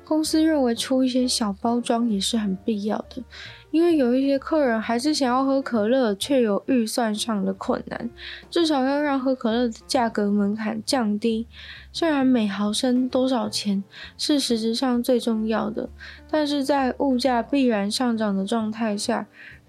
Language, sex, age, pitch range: Chinese, female, 20-39, 220-265 Hz